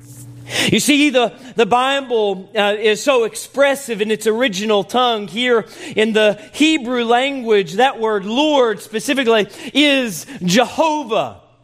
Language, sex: English, male